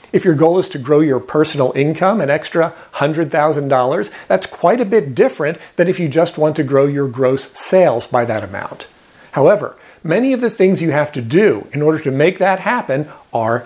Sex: male